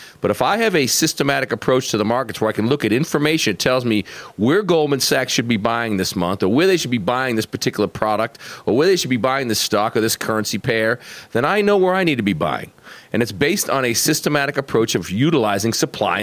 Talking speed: 250 wpm